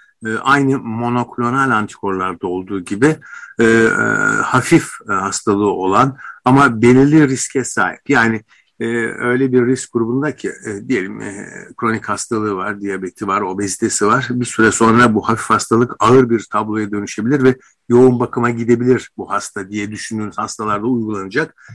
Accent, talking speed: native, 135 wpm